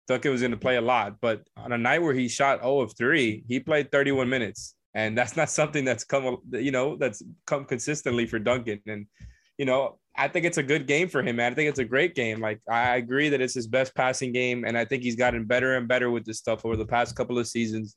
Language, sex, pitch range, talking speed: English, male, 120-150 Hz, 260 wpm